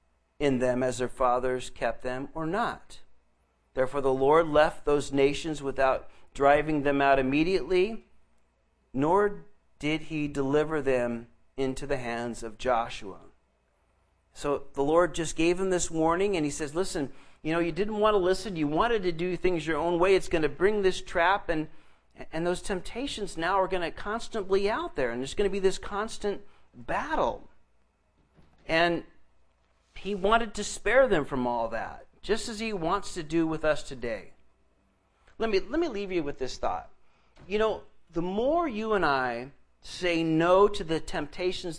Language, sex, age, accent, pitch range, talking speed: English, male, 50-69, American, 130-200 Hz, 175 wpm